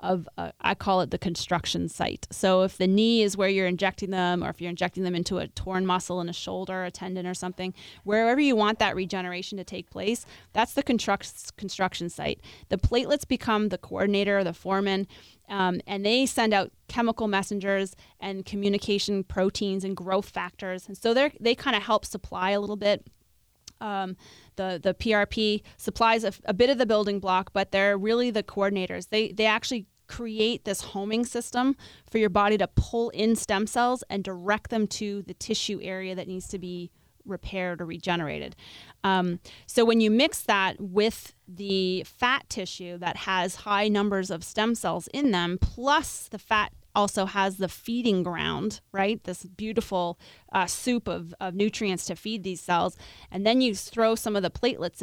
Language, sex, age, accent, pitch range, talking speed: English, female, 20-39, American, 185-220 Hz, 180 wpm